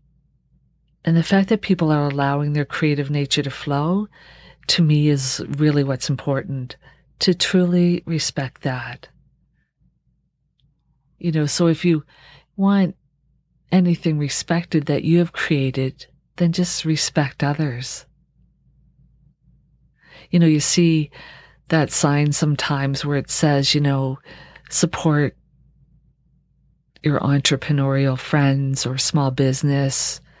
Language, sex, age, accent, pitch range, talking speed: English, female, 50-69, American, 140-160 Hz, 110 wpm